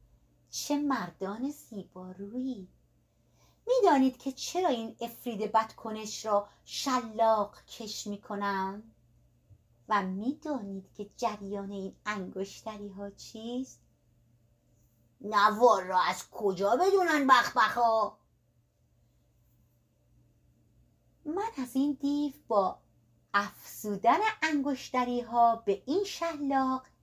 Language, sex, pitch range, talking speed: Persian, female, 180-290 Hz, 90 wpm